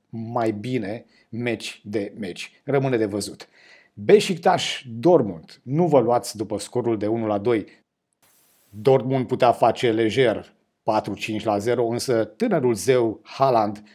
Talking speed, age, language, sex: 130 wpm, 30-49, Romanian, male